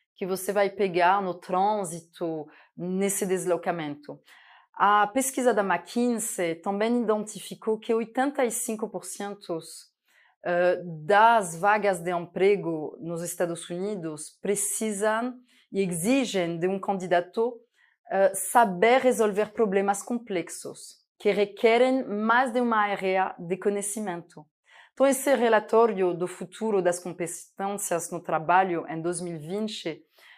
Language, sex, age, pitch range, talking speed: Portuguese, female, 20-39, 175-220 Hz, 105 wpm